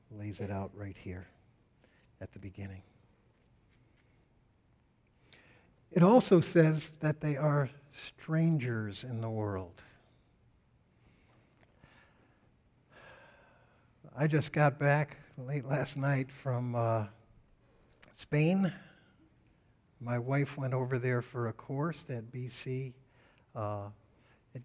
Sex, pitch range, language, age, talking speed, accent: male, 120-155 Hz, English, 60-79, 95 wpm, American